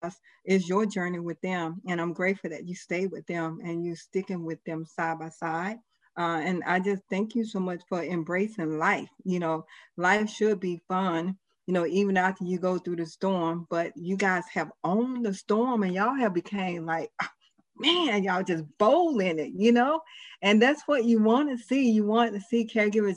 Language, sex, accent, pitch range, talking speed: English, female, American, 170-200 Hz, 205 wpm